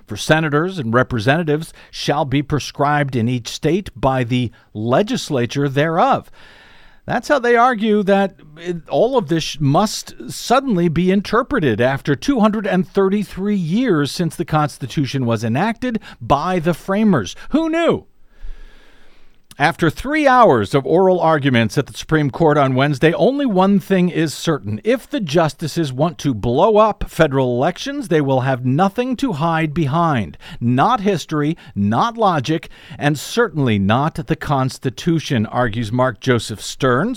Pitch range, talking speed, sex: 135-200 Hz, 135 wpm, male